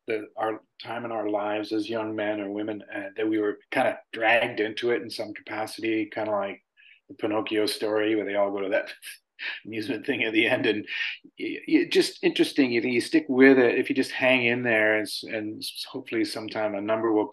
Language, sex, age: English, male, 40-59